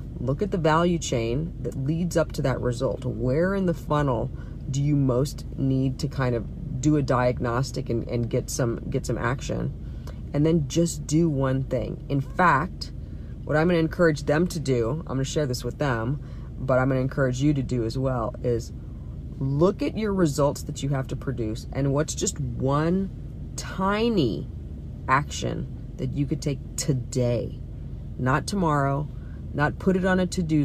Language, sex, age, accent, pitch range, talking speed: English, female, 40-59, American, 130-160 Hz, 175 wpm